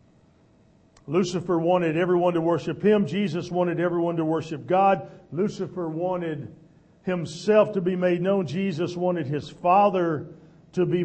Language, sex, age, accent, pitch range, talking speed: English, male, 50-69, American, 145-185 Hz, 135 wpm